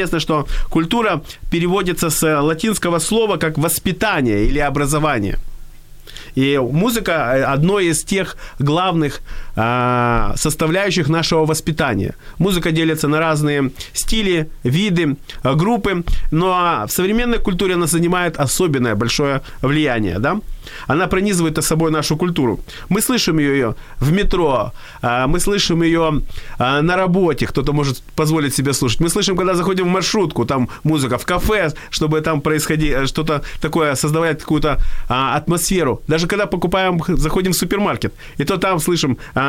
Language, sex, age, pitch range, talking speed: Ukrainian, male, 30-49, 140-180 Hz, 135 wpm